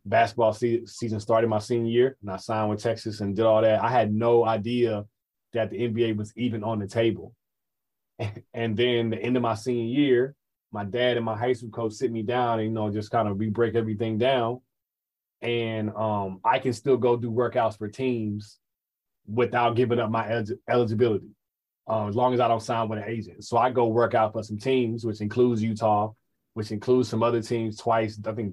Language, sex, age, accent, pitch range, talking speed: English, male, 20-39, American, 105-120 Hz, 210 wpm